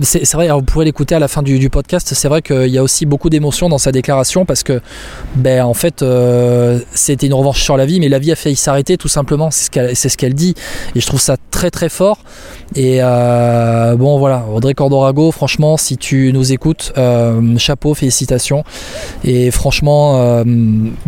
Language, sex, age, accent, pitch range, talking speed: French, male, 20-39, French, 130-155 Hz, 215 wpm